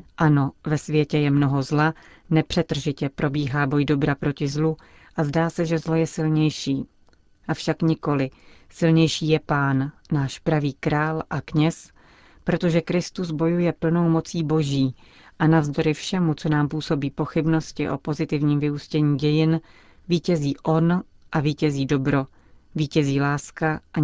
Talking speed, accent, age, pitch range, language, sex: 135 wpm, native, 40-59, 145-165 Hz, Czech, female